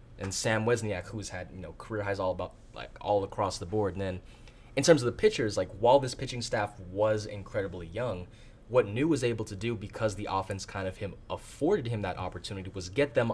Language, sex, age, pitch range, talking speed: English, male, 20-39, 95-120 Hz, 225 wpm